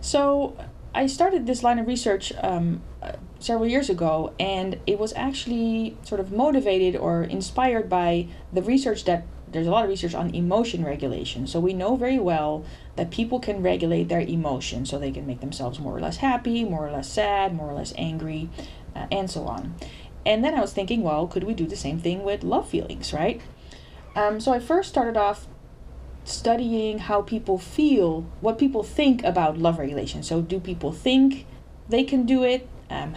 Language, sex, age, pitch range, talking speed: English, female, 20-39, 170-235 Hz, 190 wpm